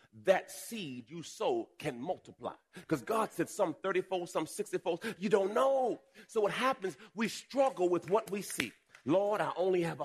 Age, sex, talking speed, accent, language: 40-59, male, 180 wpm, American, English